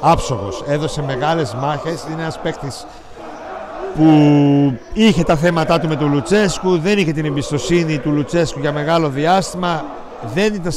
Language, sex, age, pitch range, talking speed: Greek, male, 60-79, 140-175 Hz, 145 wpm